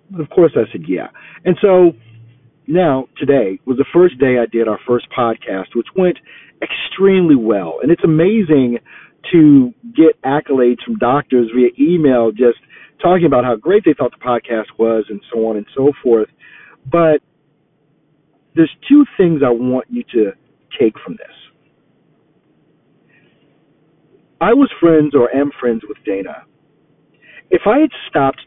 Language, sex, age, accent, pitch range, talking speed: English, male, 40-59, American, 120-170 Hz, 150 wpm